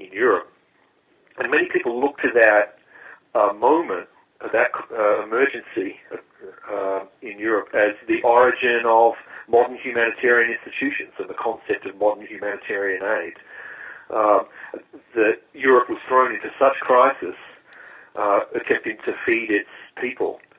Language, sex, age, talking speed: English, male, 50-69, 130 wpm